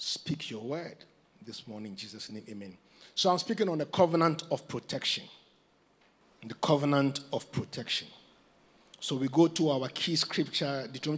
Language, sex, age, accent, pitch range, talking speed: English, male, 50-69, Nigerian, 140-175 Hz, 155 wpm